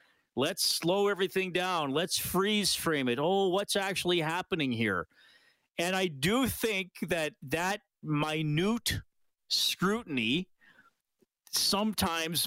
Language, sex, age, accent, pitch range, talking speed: English, male, 40-59, American, 150-195 Hz, 105 wpm